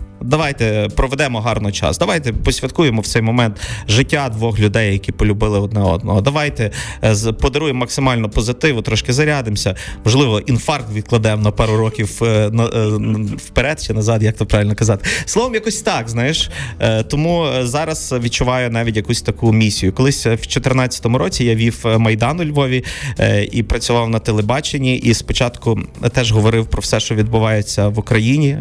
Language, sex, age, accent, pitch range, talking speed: Ukrainian, male, 30-49, native, 105-125 Hz, 145 wpm